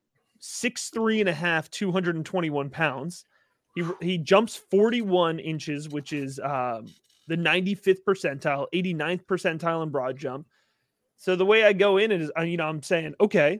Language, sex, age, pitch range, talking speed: English, male, 30-49, 165-220 Hz, 180 wpm